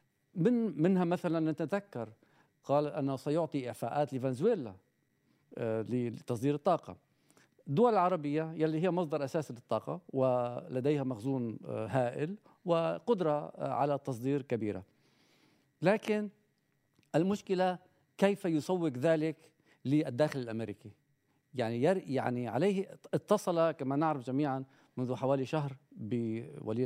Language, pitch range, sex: Arabic, 120-160 Hz, male